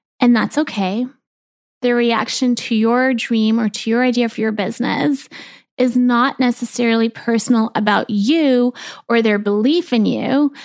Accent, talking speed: American, 145 wpm